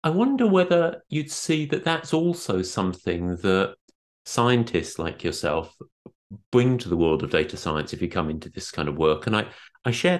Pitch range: 105-145 Hz